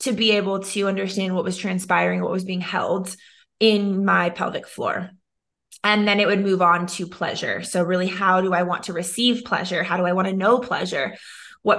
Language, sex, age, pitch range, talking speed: English, female, 20-39, 185-210 Hz, 210 wpm